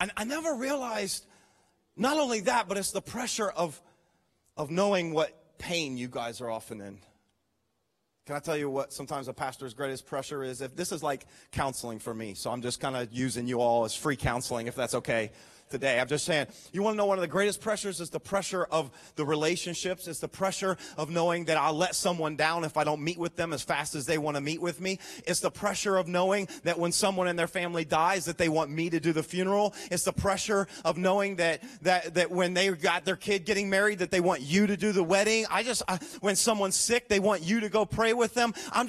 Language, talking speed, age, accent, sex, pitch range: English, 240 wpm, 30-49, American, male, 125-185 Hz